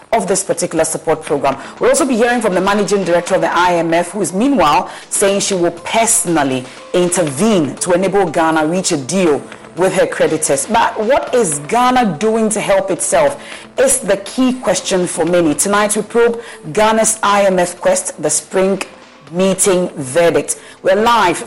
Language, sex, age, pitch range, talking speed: English, female, 40-59, 165-205 Hz, 170 wpm